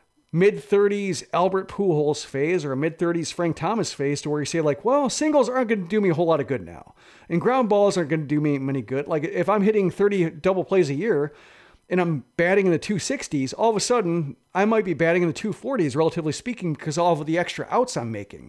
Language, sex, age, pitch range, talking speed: English, male, 40-59, 150-190 Hz, 245 wpm